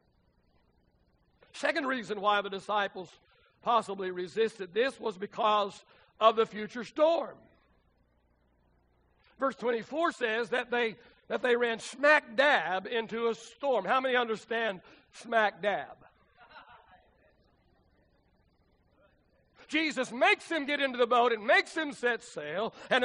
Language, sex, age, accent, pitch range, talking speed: English, male, 60-79, American, 225-305 Hz, 115 wpm